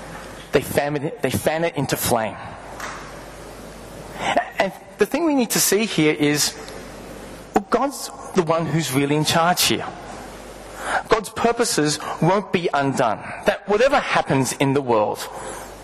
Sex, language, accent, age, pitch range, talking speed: male, English, Australian, 30-49, 135-180 Hz, 140 wpm